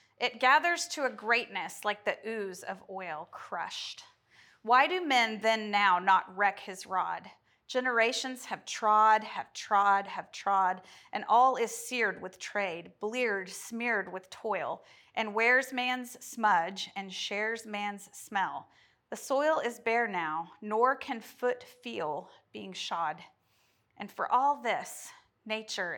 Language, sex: English, female